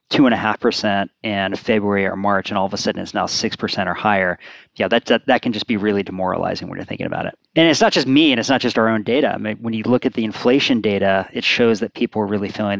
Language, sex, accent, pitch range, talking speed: English, male, American, 100-120 Hz, 290 wpm